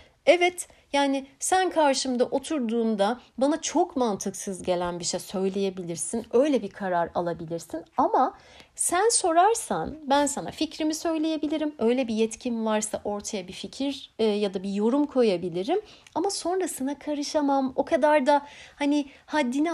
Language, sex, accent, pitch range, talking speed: Turkish, female, native, 205-295 Hz, 130 wpm